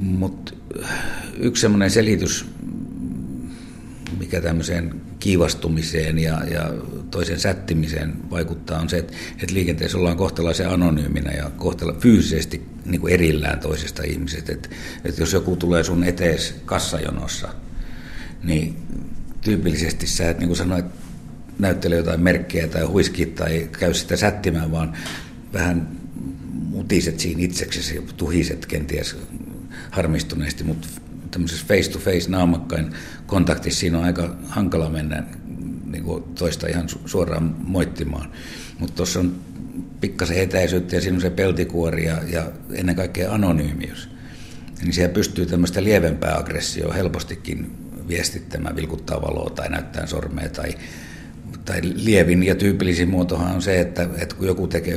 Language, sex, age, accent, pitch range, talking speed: Finnish, male, 60-79, native, 80-90 Hz, 125 wpm